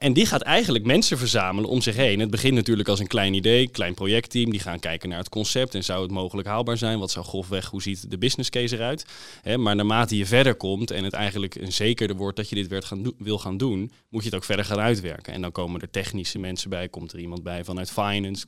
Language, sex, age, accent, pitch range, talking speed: Dutch, male, 20-39, Dutch, 95-120 Hz, 250 wpm